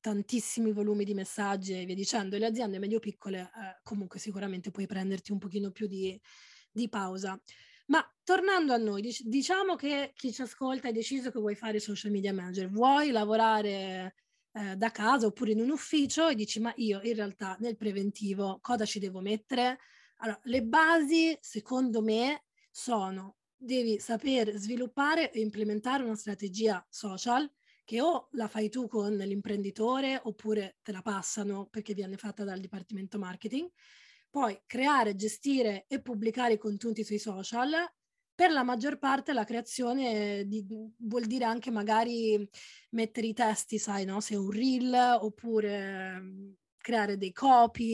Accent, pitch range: native, 205-250 Hz